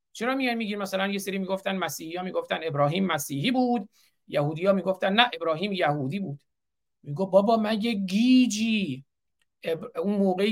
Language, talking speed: Persian, 150 wpm